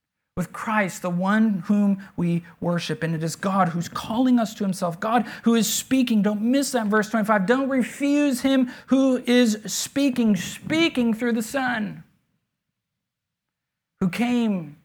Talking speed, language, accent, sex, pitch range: 150 wpm, English, American, male, 160-205 Hz